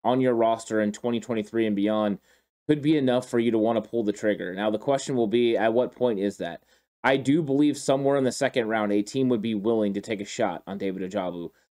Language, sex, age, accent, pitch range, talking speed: English, male, 30-49, American, 110-130 Hz, 245 wpm